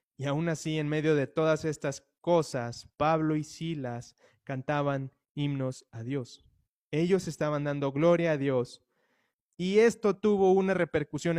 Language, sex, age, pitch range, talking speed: Spanish, male, 20-39, 135-170 Hz, 140 wpm